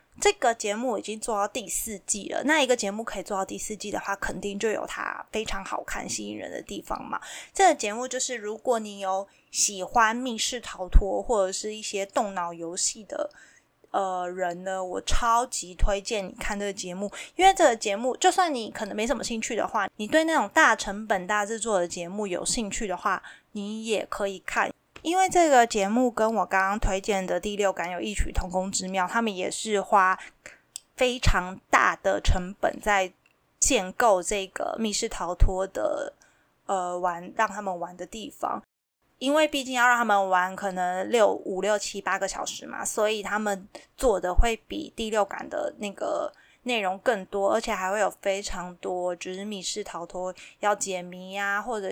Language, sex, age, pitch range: Chinese, female, 20-39, 190-235 Hz